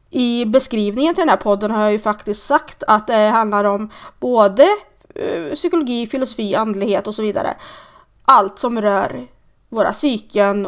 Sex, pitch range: female, 210-265 Hz